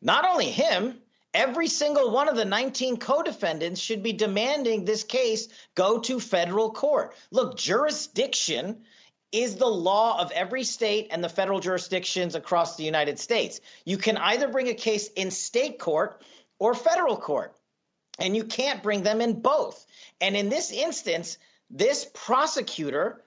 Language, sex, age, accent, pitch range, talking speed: English, male, 40-59, American, 195-245 Hz, 155 wpm